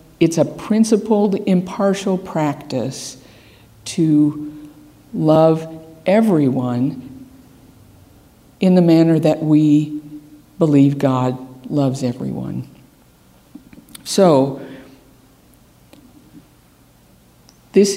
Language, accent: English, American